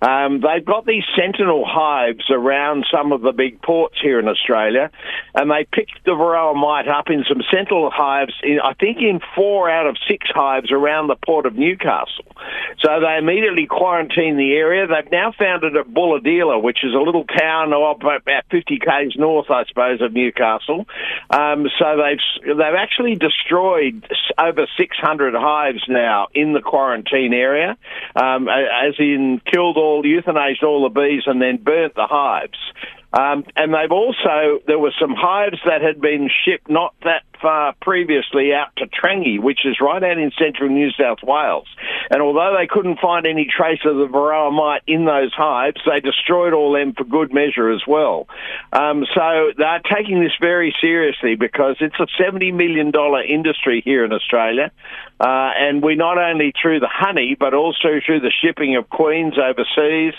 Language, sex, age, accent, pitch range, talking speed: English, male, 50-69, Australian, 140-165 Hz, 175 wpm